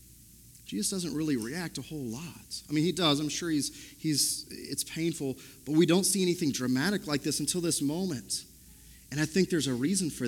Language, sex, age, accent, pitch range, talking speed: English, male, 40-59, American, 135-175 Hz, 205 wpm